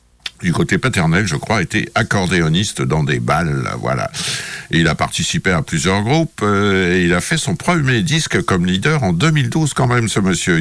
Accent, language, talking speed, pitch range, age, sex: French, French, 190 wpm, 90-145 Hz, 60-79, male